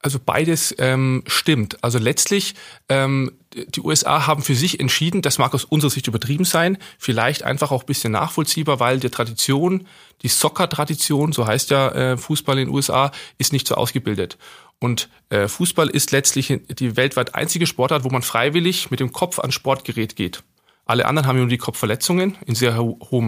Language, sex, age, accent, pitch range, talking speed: German, male, 40-59, German, 120-150 Hz, 180 wpm